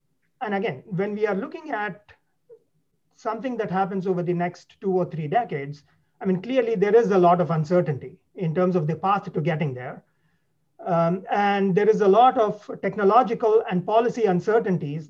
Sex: male